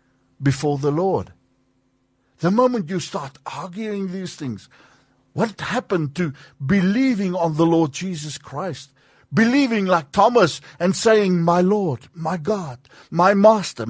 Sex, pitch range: male, 130-205 Hz